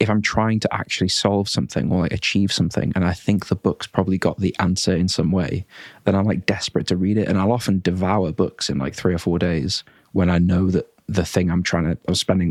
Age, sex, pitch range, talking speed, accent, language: 20-39, male, 90-100 Hz, 250 wpm, British, English